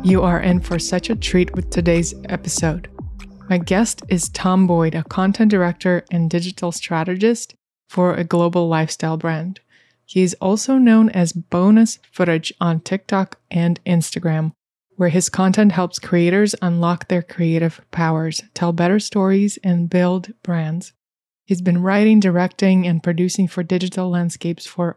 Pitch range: 170-185 Hz